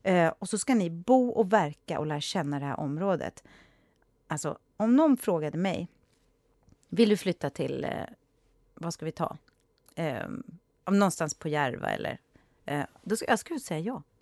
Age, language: 30-49, Swedish